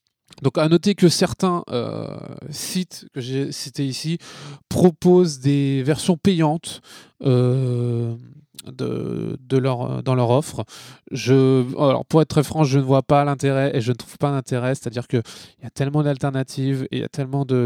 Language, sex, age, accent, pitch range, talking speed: French, male, 20-39, French, 130-165 Hz, 180 wpm